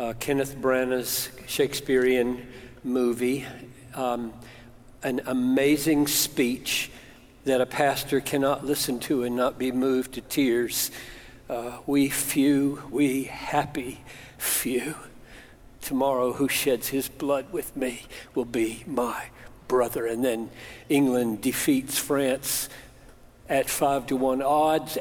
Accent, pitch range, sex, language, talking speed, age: American, 120-140 Hz, male, English, 115 wpm, 60-79